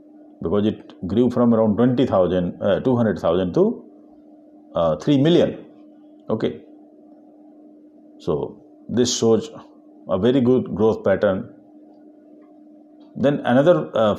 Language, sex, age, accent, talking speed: Hindi, male, 50-69, native, 110 wpm